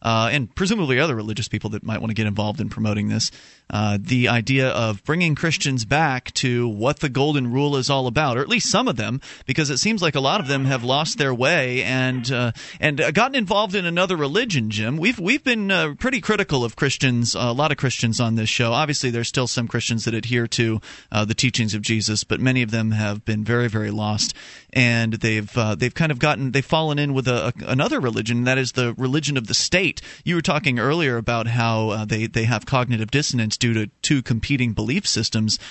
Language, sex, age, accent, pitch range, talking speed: English, male, 30-49, American, 115-145 Hz, 225 wpm